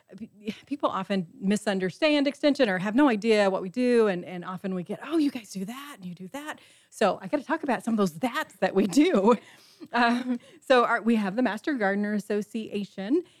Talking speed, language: 210 wpm, English